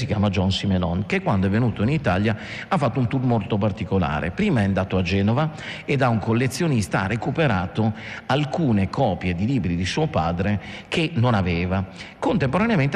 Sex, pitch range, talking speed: male, 95-120 Hz, 175 wpm